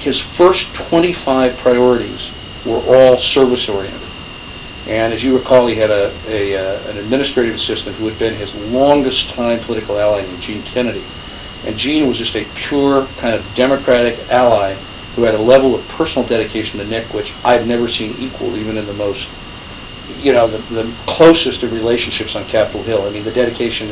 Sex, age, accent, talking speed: male, 50-69, American, 180 wpm